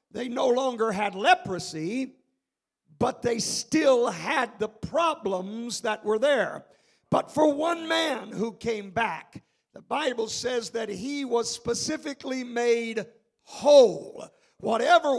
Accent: American